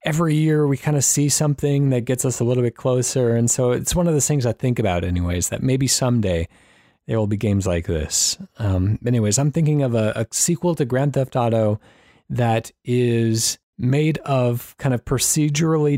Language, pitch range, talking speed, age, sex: English, 110-135 Hz, 200 wpm, 30-49, male